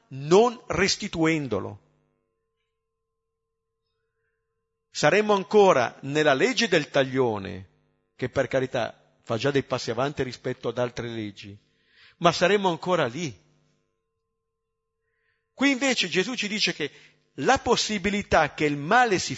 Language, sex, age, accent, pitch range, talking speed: Italian, male, 50-69, native, 125-190 Hz, 110 wpm